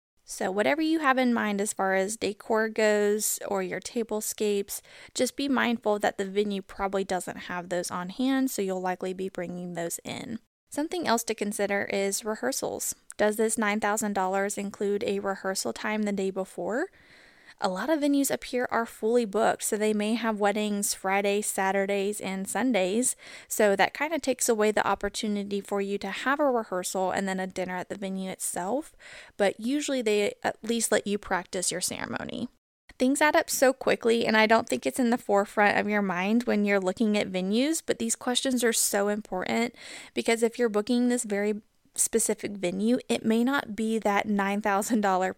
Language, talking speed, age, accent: English, 185 wpm, 20-39, American